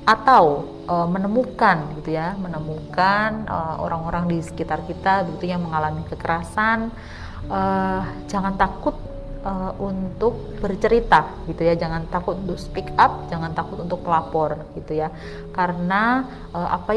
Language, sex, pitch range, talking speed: Indonesian, female, 160-200 Hz, 130 wpm